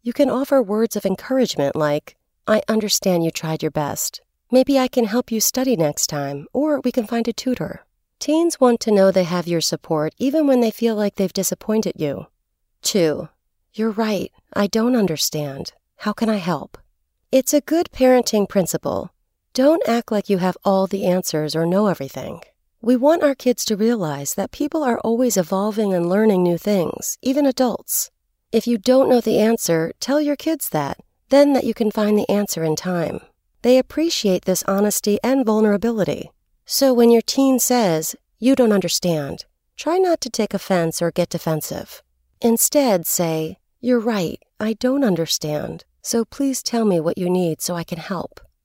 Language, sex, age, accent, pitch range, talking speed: English, female, 40-59, American, 175-255 Hz, 180 wpm